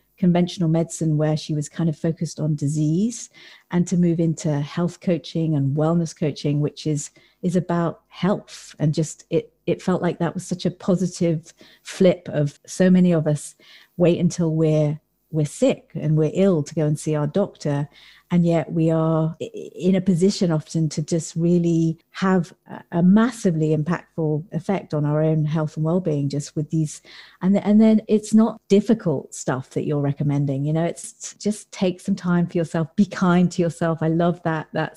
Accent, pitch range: British, 155-180 Hz